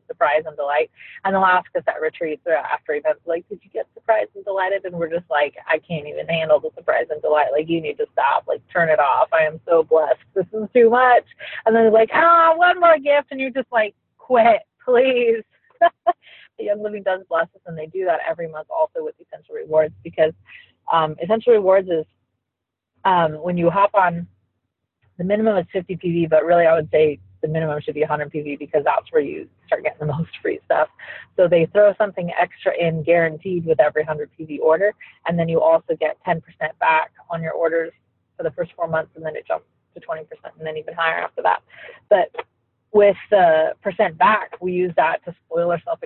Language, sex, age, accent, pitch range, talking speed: English, female, 30-49, American, 160-230 Hz, 215 wpm